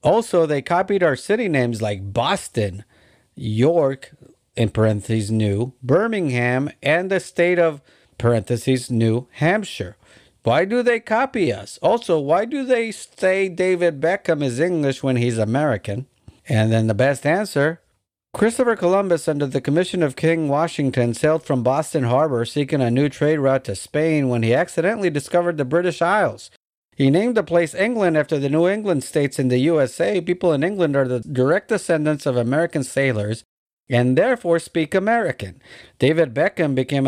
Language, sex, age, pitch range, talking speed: English, male, 50-69, 120-170 Hz, 160 wpm